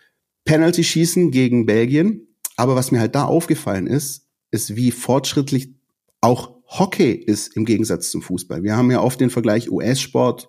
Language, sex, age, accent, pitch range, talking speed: German, male, 40-59, German, 110-140 Hz, 160 wpm